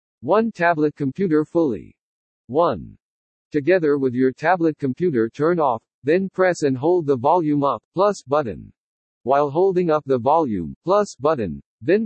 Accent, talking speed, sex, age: American, 145 wpm, male, 60-79